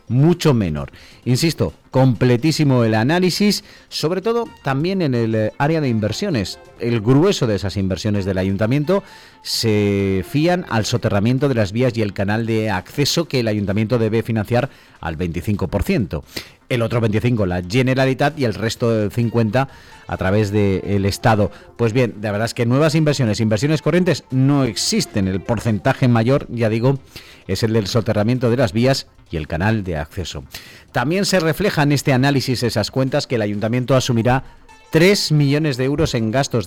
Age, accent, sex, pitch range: 40-59, Spanish, male, 105-145 Hz